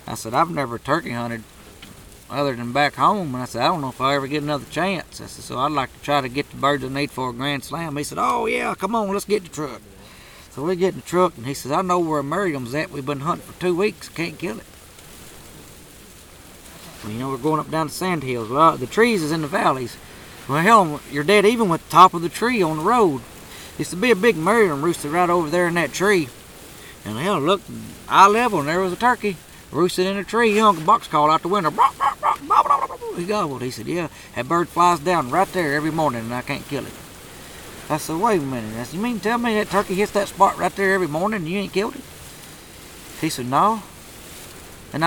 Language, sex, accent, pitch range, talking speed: English, male, American, 140-200 Hz, 250 wpm